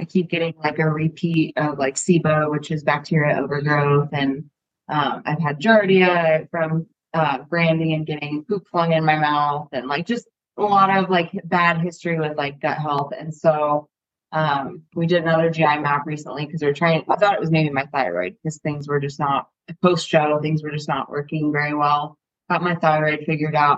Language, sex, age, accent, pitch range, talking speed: English, female, 20-39, American, 150-170 Hz, 200 wpm